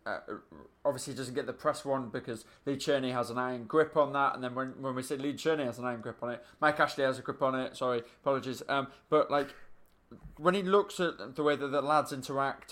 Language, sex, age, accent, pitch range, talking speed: English, male, 20-39, British, 125-150 Hz, 245 wpm